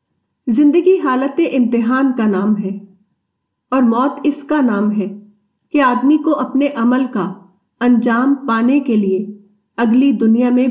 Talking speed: 140 wpm